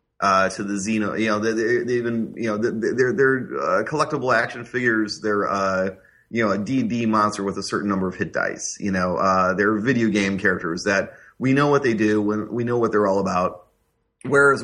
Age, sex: 30-49, male